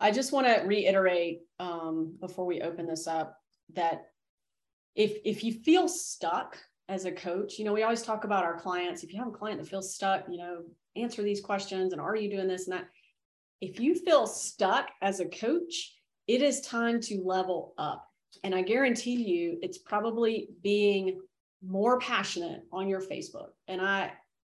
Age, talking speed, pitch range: 30-49, 185 wpm, 180-215 Hz